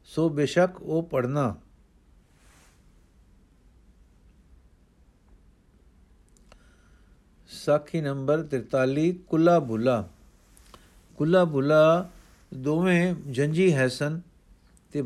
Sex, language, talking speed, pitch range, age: male, Punjabi, 60 wpm, 130-165 Hz, 50-69